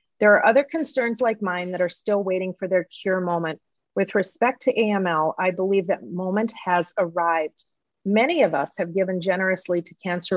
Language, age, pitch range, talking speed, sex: English, 40-59, 170-205 Hz, 185 wpm, female